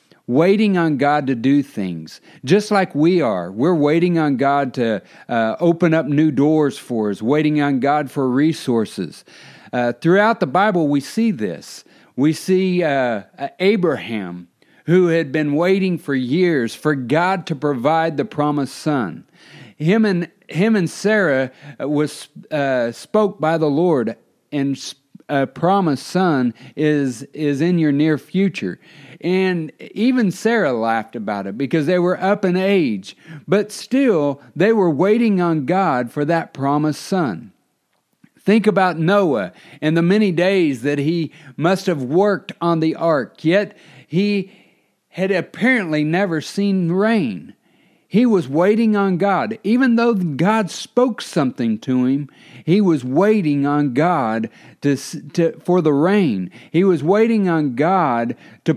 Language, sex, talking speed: English, male, 150 wpm